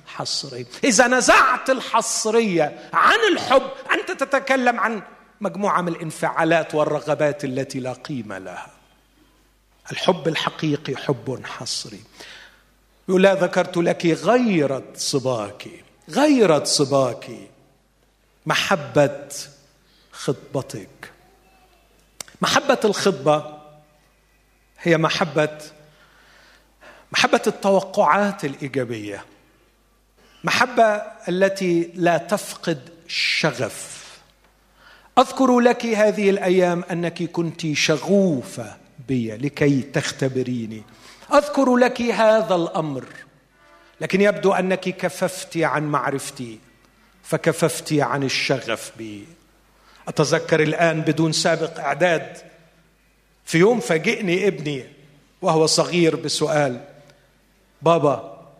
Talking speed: 80 wpm